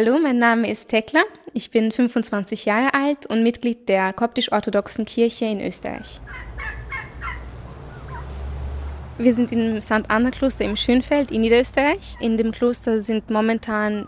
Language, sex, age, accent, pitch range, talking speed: German, female, 20-39, German, 215-250 Hz, 130 wpm